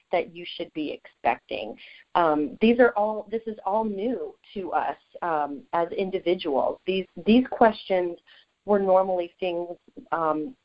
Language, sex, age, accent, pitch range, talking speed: English, female, 40-59, American, 170-210 Hz, 140 wpm